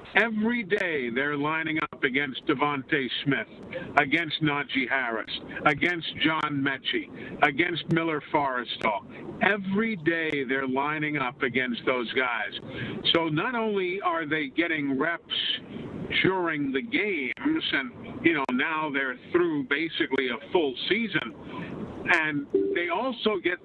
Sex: male